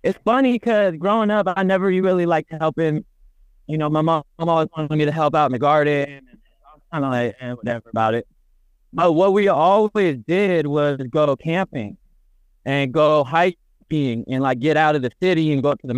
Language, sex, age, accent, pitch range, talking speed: English, male, 30-49, American, 145-185 Hz, 200 wpm